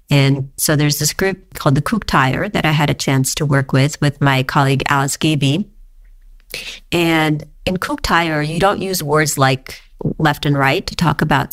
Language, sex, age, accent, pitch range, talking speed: English, female, 40-59, American, 140-165 Hz, 180 wpm